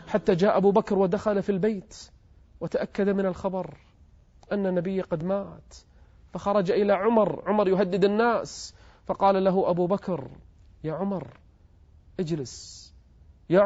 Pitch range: 120-190 Hz